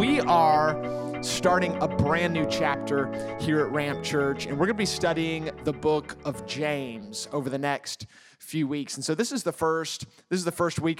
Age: 30-49